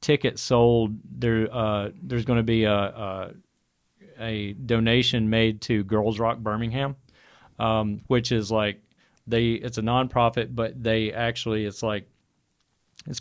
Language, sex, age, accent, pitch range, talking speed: English, male, 40-59, American, 105-120 Hz, 145 wpm